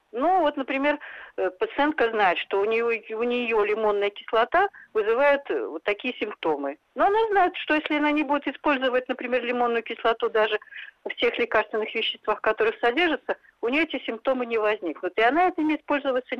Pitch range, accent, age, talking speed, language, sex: 220-285 Hz, native, 50-69, 165 wpm, Russian, female